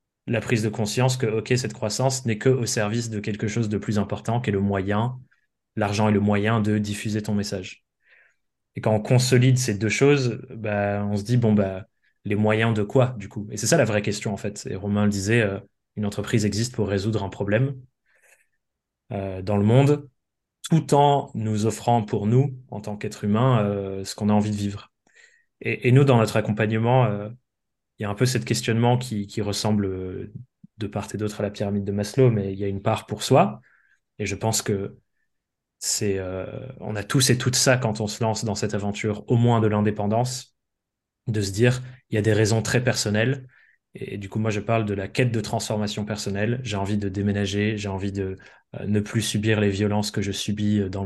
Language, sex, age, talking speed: French, male, 20-39, 220 wpm